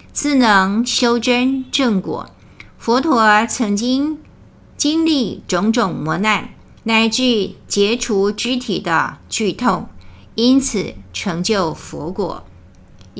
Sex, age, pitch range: female, 50-69, 190-245 Hz